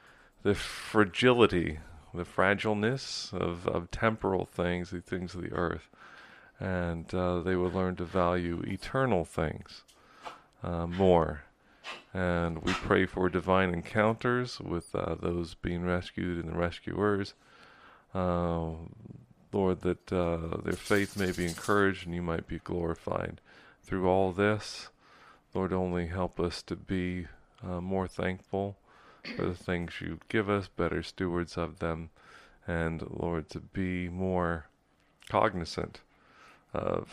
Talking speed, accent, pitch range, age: 130 wpm, American, 85-95 Hz, 40-59